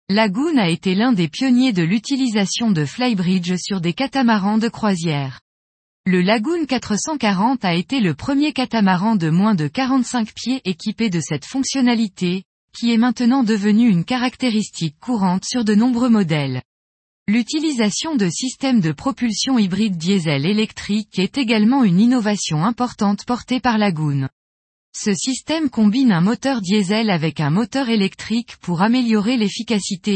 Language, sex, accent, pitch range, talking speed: French, female, French, 185-245 Hz, 145 wpm